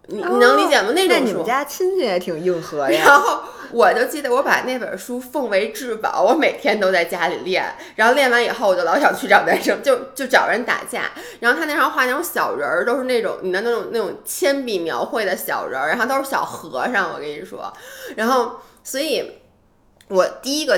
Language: Chinese